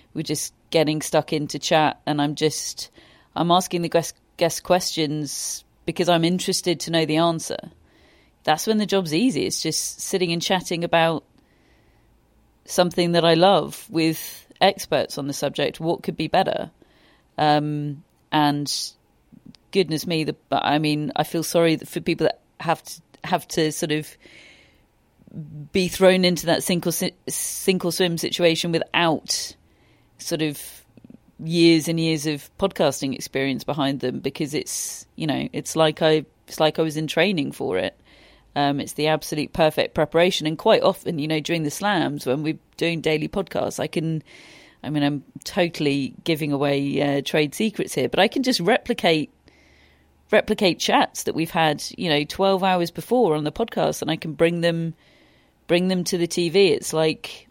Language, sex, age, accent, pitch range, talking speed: English, female, 40-59, British, 150-175 Hz, 165 wpm